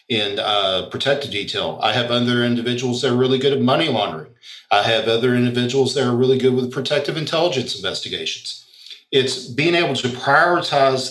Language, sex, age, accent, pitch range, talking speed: English, male, 40-59, American, 115-130 Hz, 175 wpm